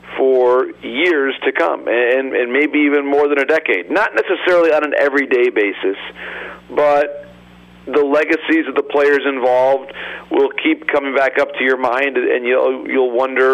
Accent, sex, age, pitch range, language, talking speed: American, male, 40-59, 130-155 Hz, English, 165 wpm